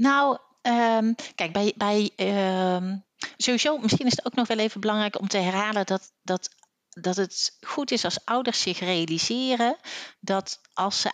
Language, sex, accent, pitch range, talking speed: Dutch, female, Dutch, 175-220 Hz, 165 wpm